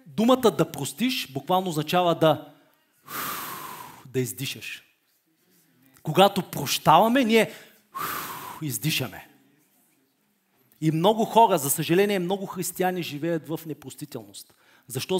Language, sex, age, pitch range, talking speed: Bulgarian, male, 40-59, 155-215 Hz, 90 wpm